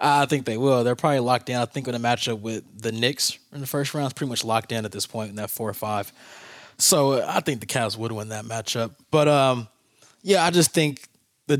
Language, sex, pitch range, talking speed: English, male, 105-130 Hz, 255 wpm